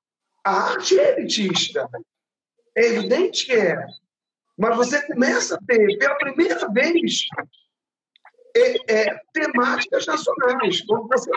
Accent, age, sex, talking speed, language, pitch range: Brazilian, 50-69, male, 105 wpm, Portuguese, 205-315 Hz